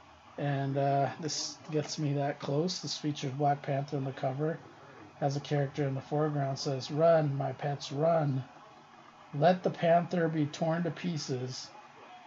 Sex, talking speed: male, 155 wpm